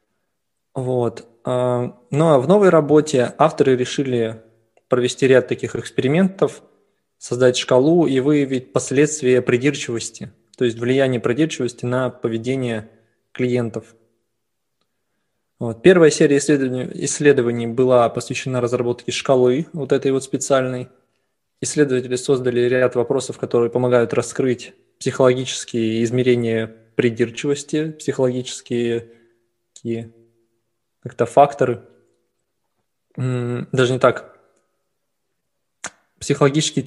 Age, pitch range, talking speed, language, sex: 20-39, 120-135 Hz, 90 wpm, Russian, male